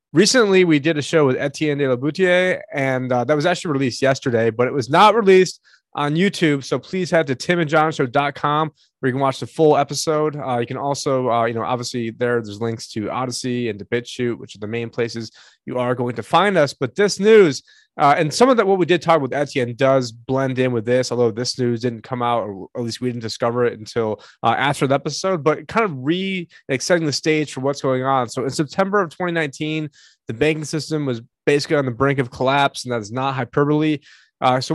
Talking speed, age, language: 230 wpm, 30-49, English